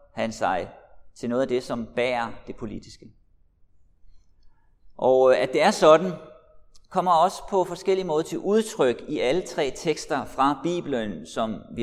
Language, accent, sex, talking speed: Danish, native, male, 150 wpm